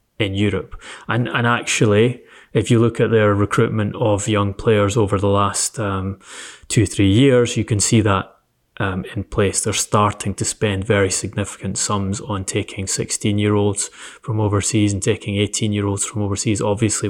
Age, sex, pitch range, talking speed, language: 20-39, male, 100-115 Hz, 175 wpm, English